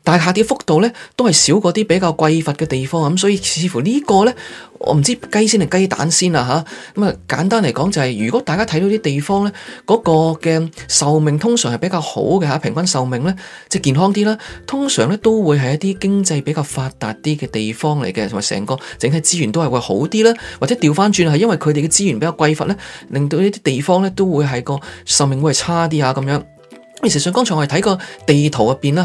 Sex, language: male, Chinese